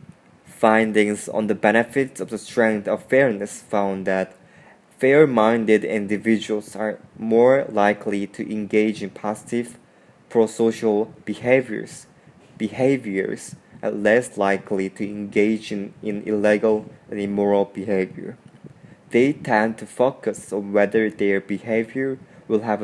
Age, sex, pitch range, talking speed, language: 20-39, male, 100-115 Hz, 115 wpm, English